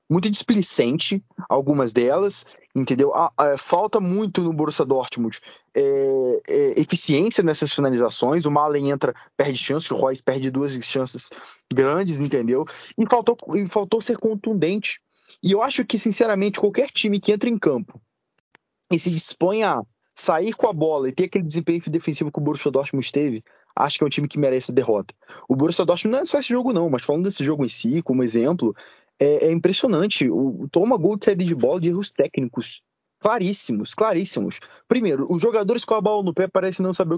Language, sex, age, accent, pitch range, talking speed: Portuguese, male, 20-39, Brazilian, 140-190 Hz, 185 wpm